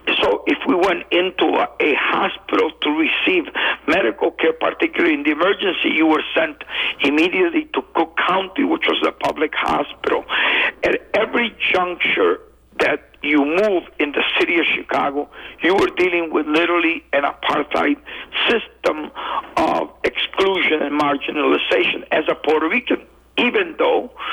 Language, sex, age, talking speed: English, male, 60-79, 140 wpm